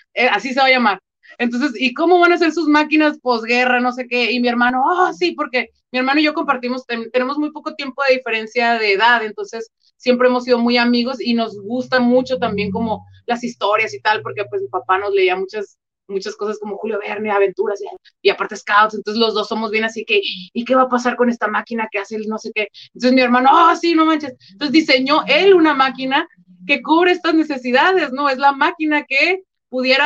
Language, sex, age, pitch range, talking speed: Spanish, female, 30-49, 220-280 Hz, 230 wpm